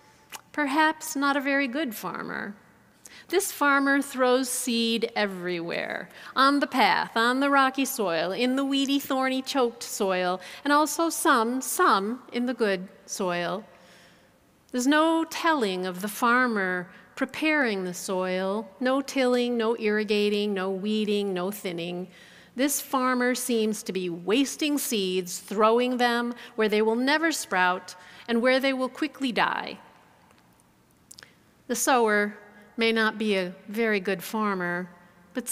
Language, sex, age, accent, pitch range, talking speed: English, female, 40-59, American, 190-260 Hz, 135 wpm